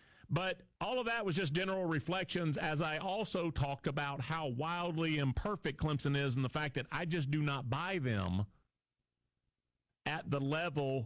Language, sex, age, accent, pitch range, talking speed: English, male, 40-59, American, 125-165 Hz, 170 wpm